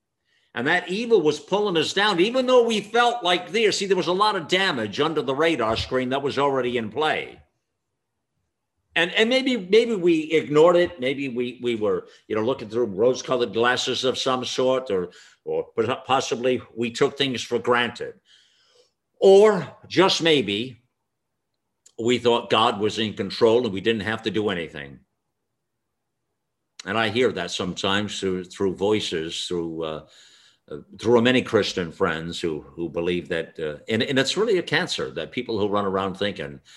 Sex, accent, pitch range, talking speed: male, American, 110-175 Hz, 170 wpm